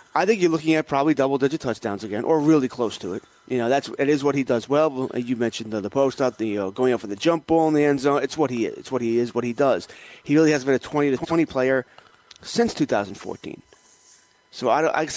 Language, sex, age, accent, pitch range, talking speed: English, male, 30-49, American, 130-165 Hz, 240 wpm